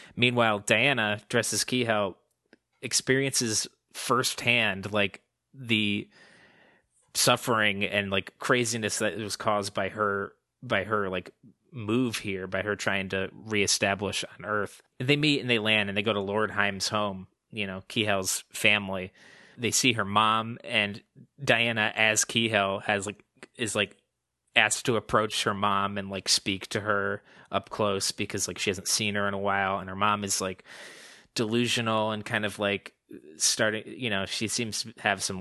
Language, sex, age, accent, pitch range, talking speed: English, male, 20-39, American, 100-110 Hz, 165 wpm